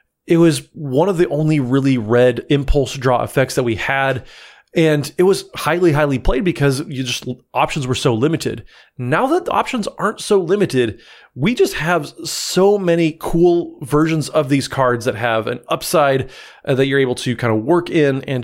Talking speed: 185 wpm